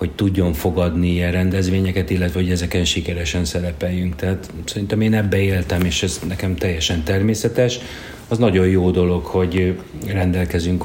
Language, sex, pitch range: Hungarian, male, 85-95 Hz